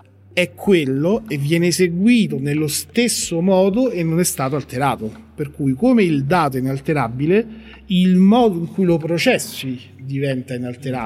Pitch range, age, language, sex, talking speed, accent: 130-175 Hz, 40-59, Italian, male, 145 wpm, native